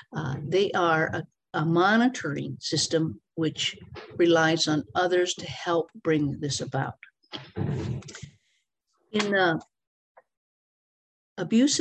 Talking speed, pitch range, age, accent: 95 wpm, 150-175 Hz, 50-69, American